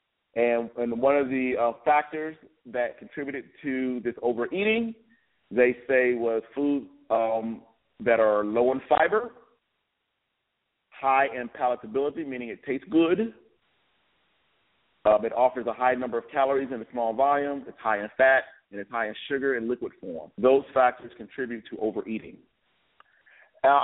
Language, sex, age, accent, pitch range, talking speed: English, male, 40-59, American, 115-145 Hz, 150 wpm